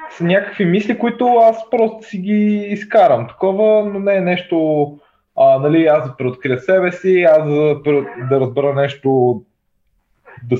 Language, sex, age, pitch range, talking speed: Bulgarian, male, 20-39, 110-170 Hz, 155 wpm